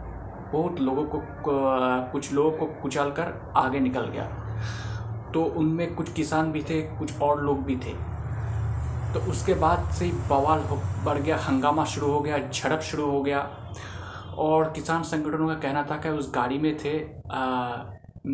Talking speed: 160 wpm